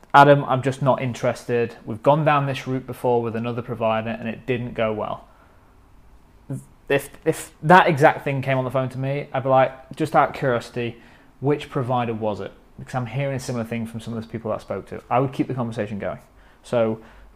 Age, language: 20-39, English